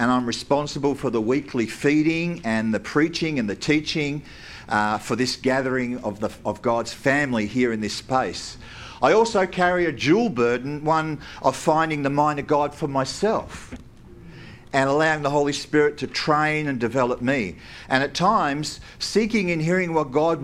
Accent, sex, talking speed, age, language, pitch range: Australian, male, 170 wpm, 50-69, English, 125-160 Hz